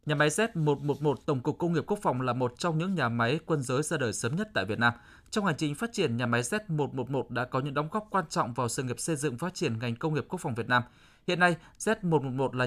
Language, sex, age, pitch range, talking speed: Vietnamese, male, 20-39, 125-165 Hz, 270 wpm